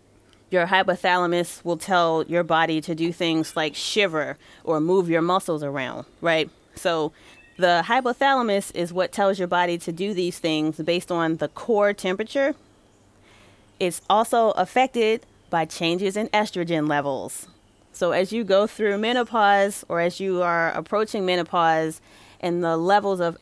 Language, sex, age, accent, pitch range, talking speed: English, female, 30-49, American, 170-210 Hz, 150 wpm